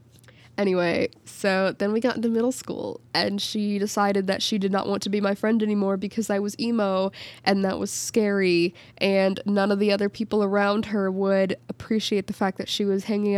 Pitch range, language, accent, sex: 185-220 Hz, English, American, female